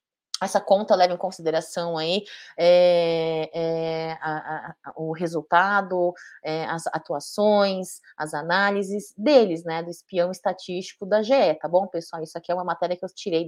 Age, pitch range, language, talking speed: 20-39, 175-230 Hz, Portuguese, 160 wpm